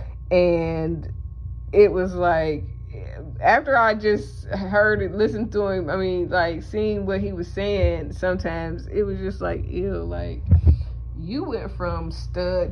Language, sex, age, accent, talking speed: English, female, 20-39, American, 145 wpm